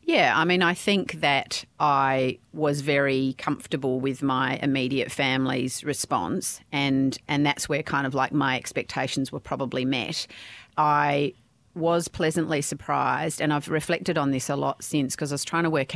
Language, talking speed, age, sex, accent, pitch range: English, 170 wpm, 40-59, female, Australian, 135-150 Hz